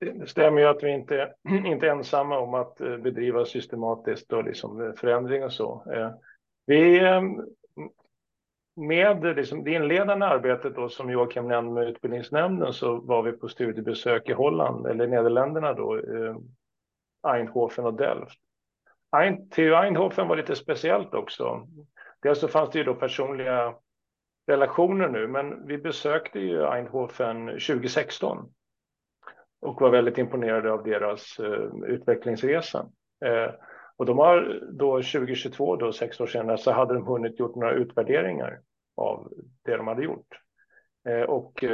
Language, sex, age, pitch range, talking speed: Swedish, male, 50-69, 120-175 Hz, 135 wpm